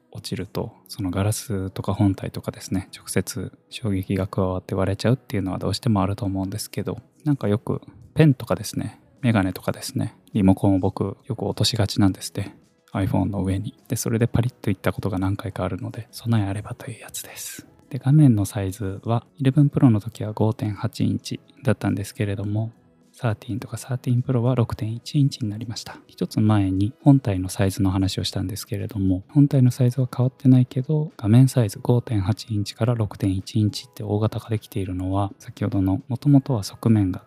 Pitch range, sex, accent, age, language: 100-125 Hz, male, native, 20-39, Japanese